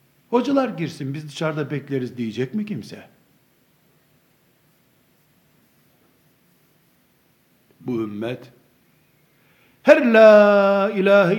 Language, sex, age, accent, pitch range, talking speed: Turkish, male, 60-79, native, 155-220 Hz, 70 wpm